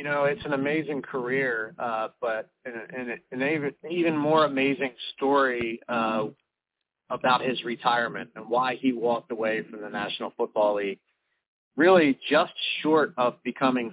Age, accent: 40-59, American